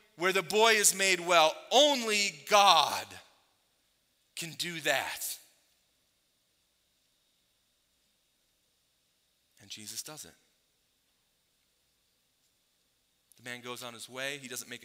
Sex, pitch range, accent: male, 110-140 Hz, American